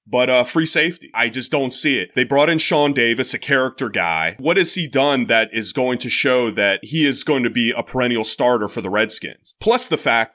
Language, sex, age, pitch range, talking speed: English, male, 30-49, 125-205 Hz, 240 wpm